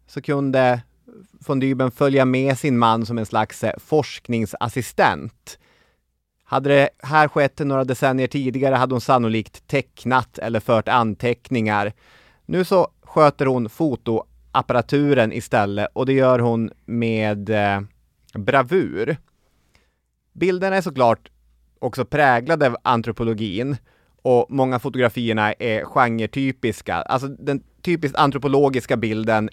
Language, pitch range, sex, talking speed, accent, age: Swedish, 110-140 Hz, male, 110 wpm, native, 30-49